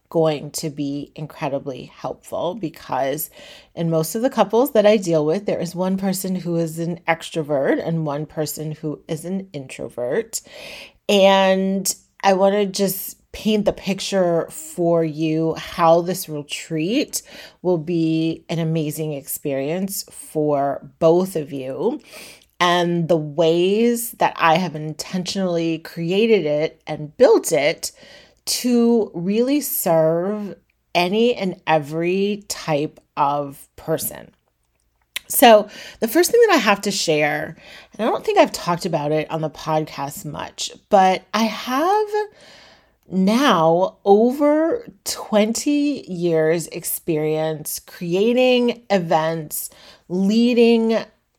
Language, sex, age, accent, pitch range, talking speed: English, female, 30-49, American, 160-205 Hz, 125 wpm